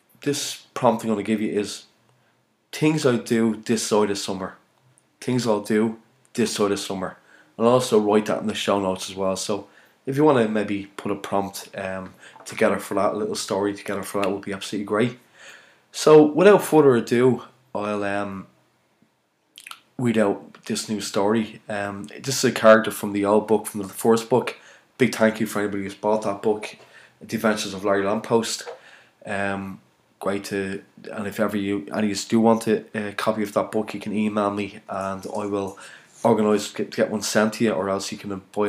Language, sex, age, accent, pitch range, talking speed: English, male, 20-39, Irish, 100-115 Hz, 200 wpm